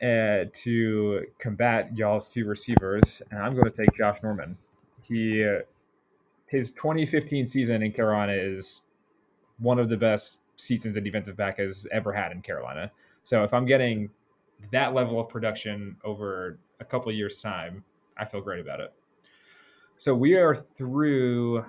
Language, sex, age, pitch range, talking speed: English, male, 20-39, 105-120 Hz, 160 wpm